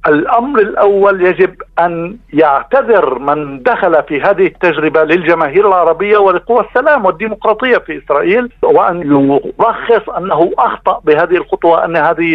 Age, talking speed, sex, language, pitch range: 50-69, 120 wpm, male, Arabic, 160-220 Hz